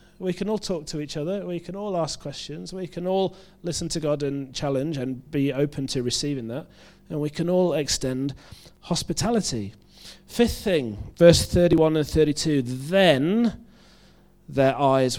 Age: 40-59